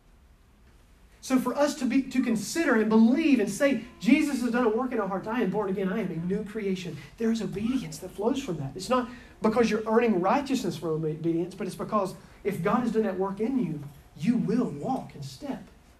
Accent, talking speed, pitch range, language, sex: American, 220 wpm, 175-230 Hz, English, male